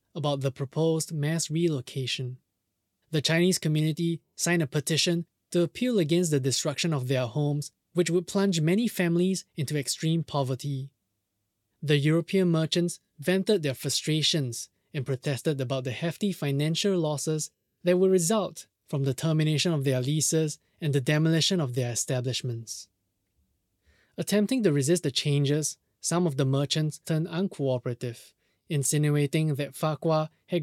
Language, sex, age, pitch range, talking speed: English, male, 20-39, 125-160 Hz, 135 wpm